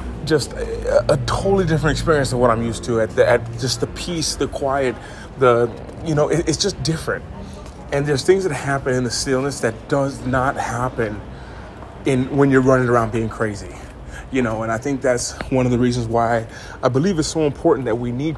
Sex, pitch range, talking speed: male, 115-140 Hz, 200 wpm